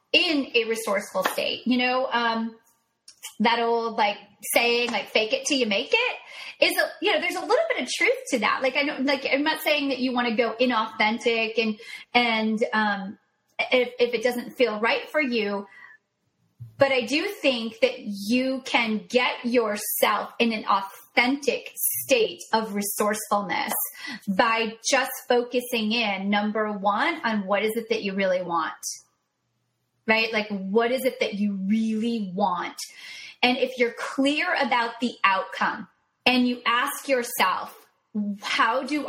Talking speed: 160 wpm